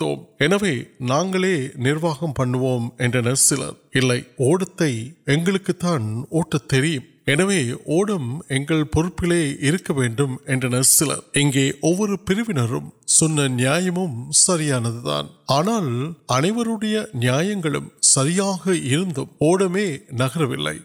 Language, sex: Urdu, male